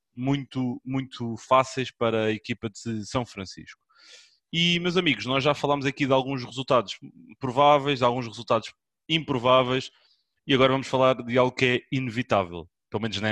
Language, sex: Portuguese, male